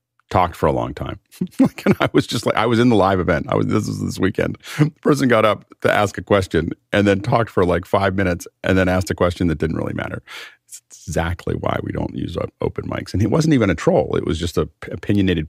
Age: 40-59